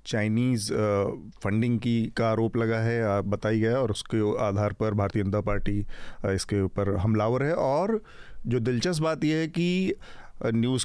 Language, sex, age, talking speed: Hindi, male, 40-59, 160 wpm